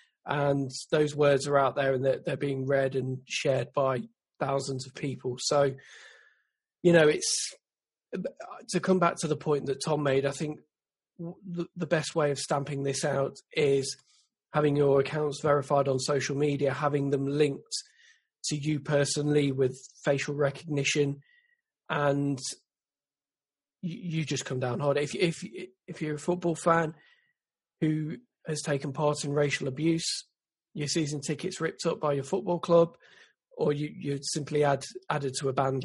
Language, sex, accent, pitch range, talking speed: English, male, British, 140-160 Hz, 155 wpm